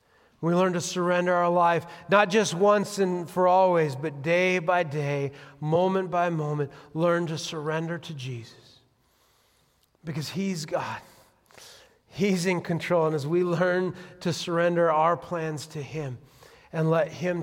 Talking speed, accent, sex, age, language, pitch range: 150 wpm, American, male, 40-59, English, 160-210 Hz